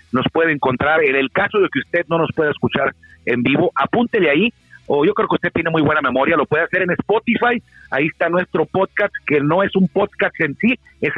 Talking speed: 230 wpm